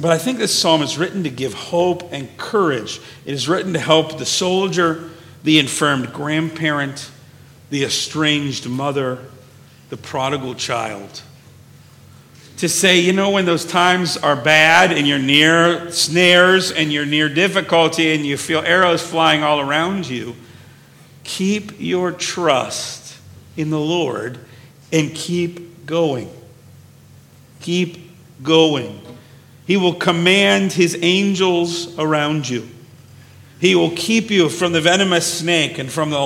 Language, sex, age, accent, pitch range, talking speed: English, male, 50-69, American, 140-175 Hz, 135 wpm